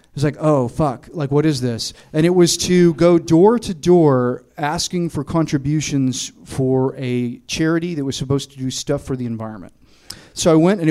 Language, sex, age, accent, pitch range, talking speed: English, male, 30-49, American, 135-170 Hz, 195 wpm